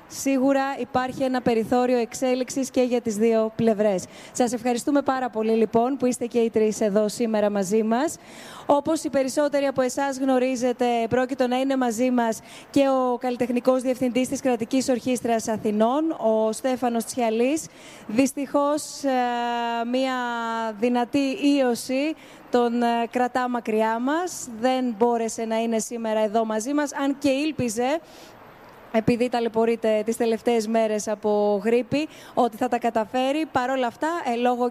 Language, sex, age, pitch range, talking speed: Greek, female, 20-39, 225-260 Hz, 140 wpm